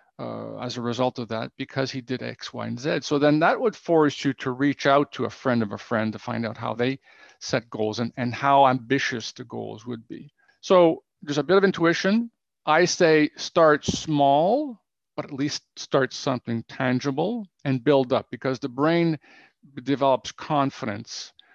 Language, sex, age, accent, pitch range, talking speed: Romanian, male, 50-69, American, 120-150 Hz, 185 wpm